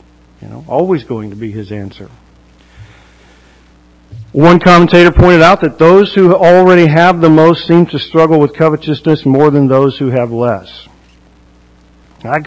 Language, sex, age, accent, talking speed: English, male, 50-69, American, 150 wpm